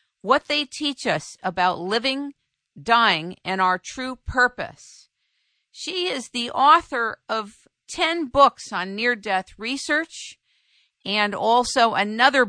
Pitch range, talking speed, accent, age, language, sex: 185-245 Hz, 115 wpm, American, 50-69, English, female